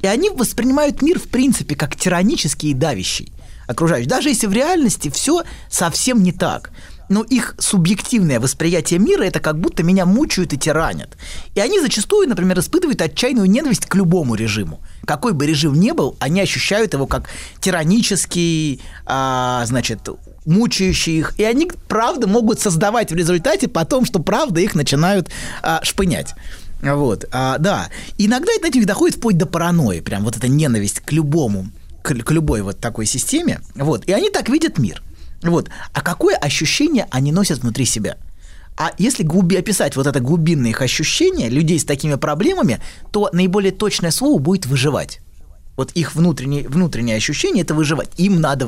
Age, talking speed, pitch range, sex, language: 20-39, 155 wpm, 135-210 Hz, male, Russian